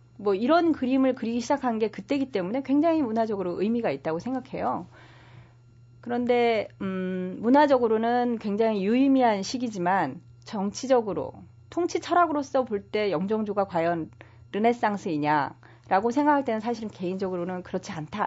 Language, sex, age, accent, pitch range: Korean, female, 30-49, native, 170-265 Hz